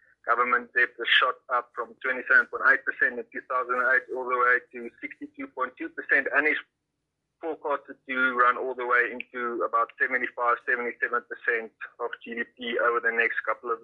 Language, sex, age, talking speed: English, male, 20-39, 140 wpm